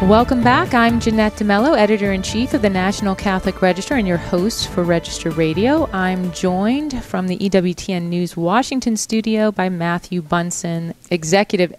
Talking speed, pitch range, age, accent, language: 160 wpm, 170-215 Hz, 30-49, American, English